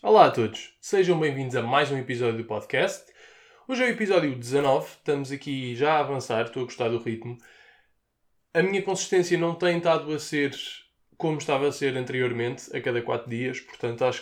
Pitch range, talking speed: 120-145 Hz, 190 wpm